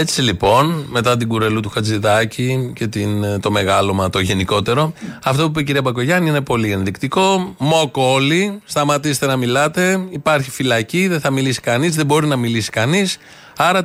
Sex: male